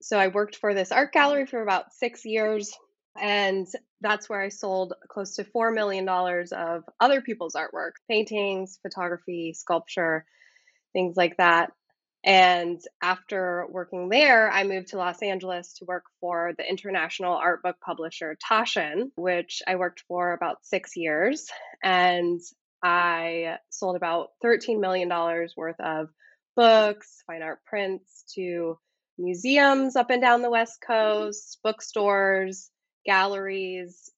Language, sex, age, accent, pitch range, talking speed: English, female, 10-29, American, 175-210 Hz, 135 wpm